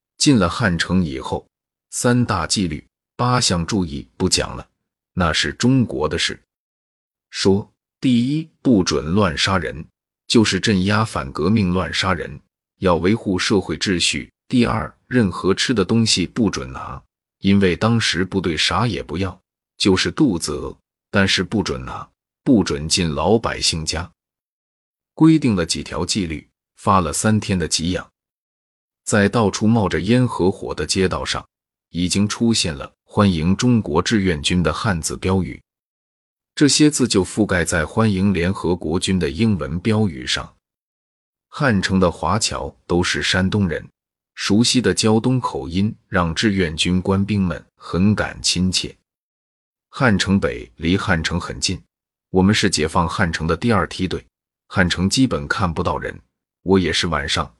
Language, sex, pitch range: Chinese, male, 85-110 Hz